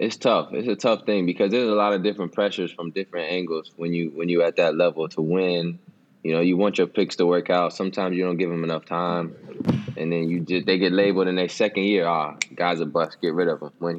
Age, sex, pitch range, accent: 20-39, male, 85-105 Hz, American